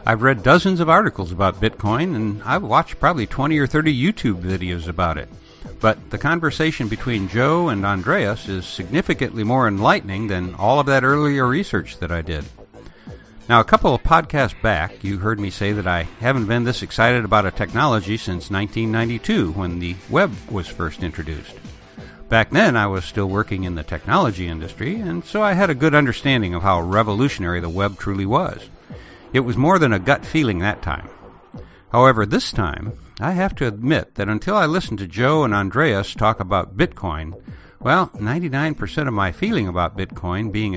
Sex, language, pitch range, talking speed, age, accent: male, English, 90-130 Hz, 180 wpm, 60-79, American